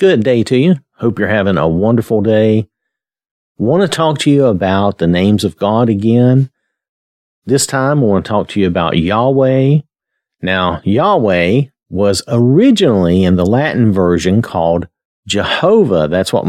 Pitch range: 95-135 Hz